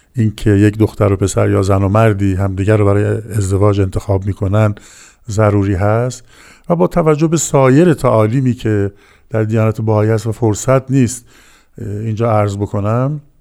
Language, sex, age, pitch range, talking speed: Persian, male, 50-69, 105-125 Hz, 150 wpm